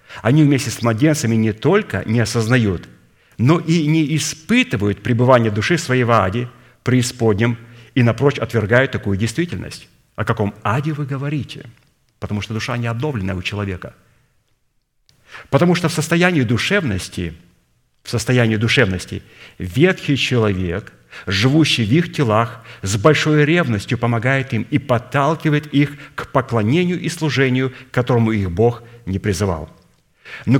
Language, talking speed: Russian, 130 wpm